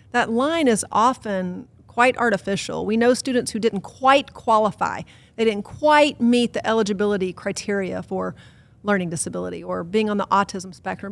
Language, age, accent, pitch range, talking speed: English, 40-59, American, 190-245 Hz, 155 wpm